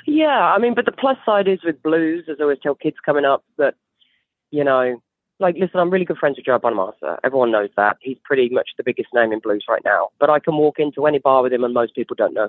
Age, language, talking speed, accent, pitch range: 30-49, English, 270 wpm, British, 120-160 Hz